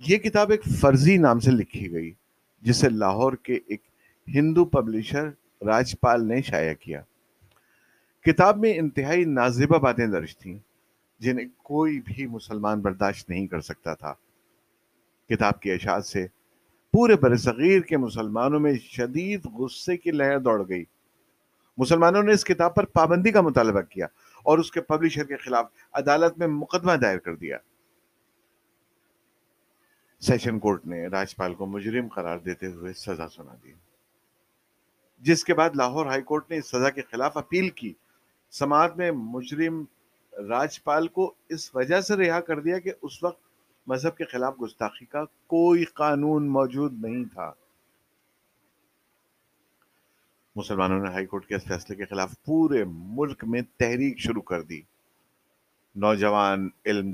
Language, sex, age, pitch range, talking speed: Urdu, male, 50-69, 105-160 Hz, 130 wpm